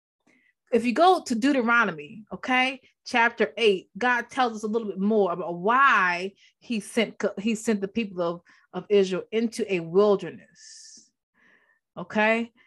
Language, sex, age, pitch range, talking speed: English, female, 20-39, 200-245 Hz, 140 wpm